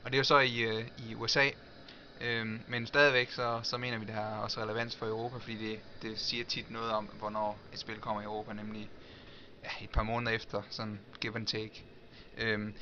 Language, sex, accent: Danish, male, native